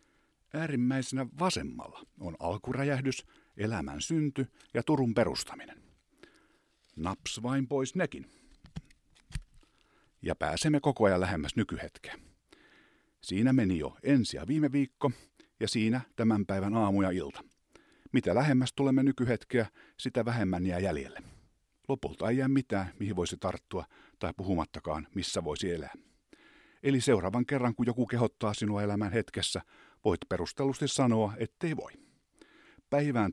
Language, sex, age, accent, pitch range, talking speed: Finnish, male, 50-69, native, 100-135 Hz, 120 wpm